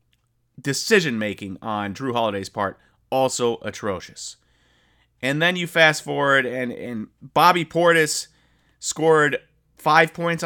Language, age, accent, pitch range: English, 30-49, American, 125-160 Hz